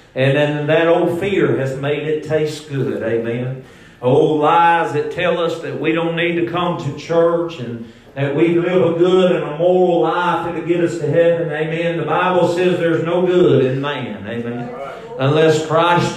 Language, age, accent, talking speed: English, 40-59, American, 195 wpm